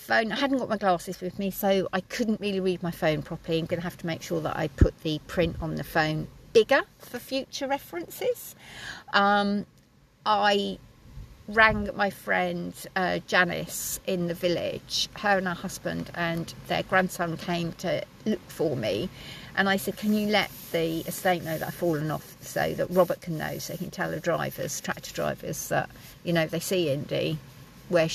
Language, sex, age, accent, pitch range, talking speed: English, female, 50-69, British, 160-195 Hz, 190 wpm